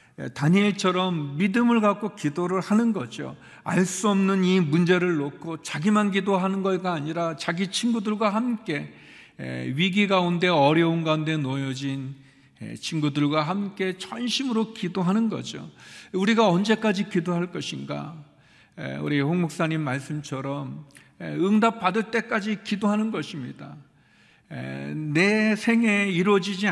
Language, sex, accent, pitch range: Korean, male, native, 150-205 Hz